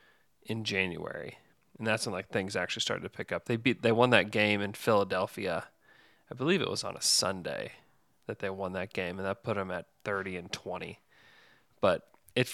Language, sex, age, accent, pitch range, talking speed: English, male, 20-39, American, 100-125 Hz, 200 wpm